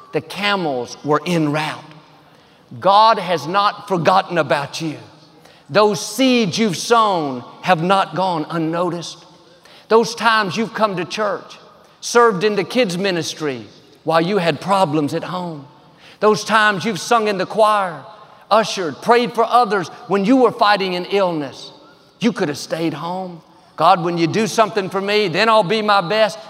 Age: 50-69